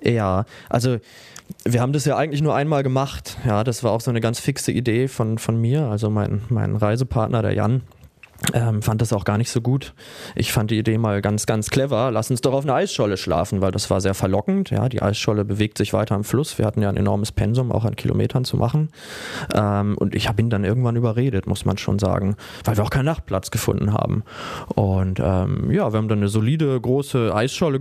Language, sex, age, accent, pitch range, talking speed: German, male, 20-39, German, 105-130 Hz, 225 wpm